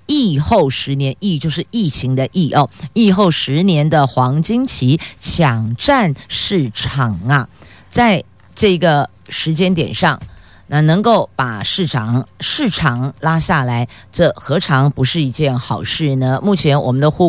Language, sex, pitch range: Chinese, female, 130-175 Hz